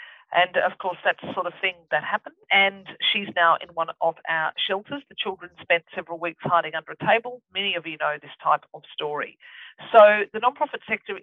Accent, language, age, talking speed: Australian, English, 50-69, 210 wpm